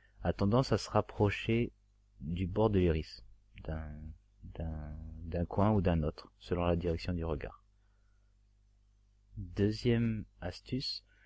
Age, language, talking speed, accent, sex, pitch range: 30-49, French, 125 wpm, French, male, 90-100 Hz